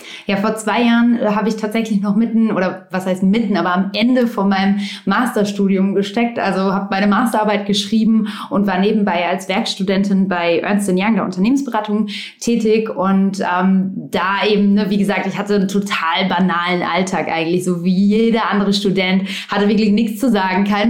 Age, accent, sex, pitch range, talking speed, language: 20-39, German, female, 195-225 Hz, 175 wpm, German